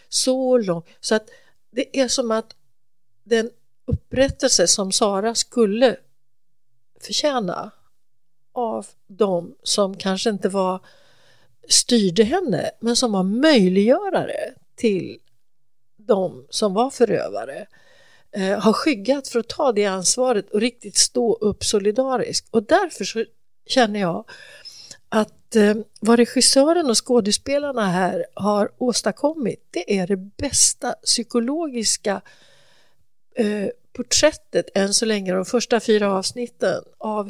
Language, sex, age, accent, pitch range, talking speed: English, female, 60-79, Swedish, 195-235 Hz, 115 wpm